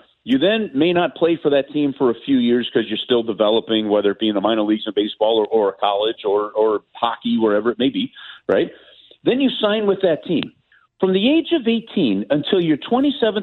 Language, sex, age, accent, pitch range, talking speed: English, male, 50-69, American, 125-195 Hz, 230 wpm